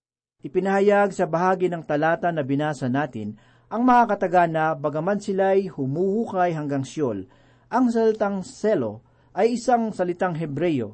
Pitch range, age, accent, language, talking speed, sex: 140-195 Hz, 40-59, native, Filipino, 125 wpm, male